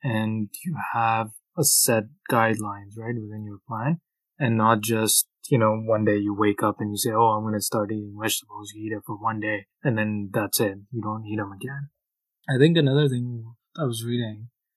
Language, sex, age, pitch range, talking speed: English, male, 20-39, 110-140 Hz, 210 wpm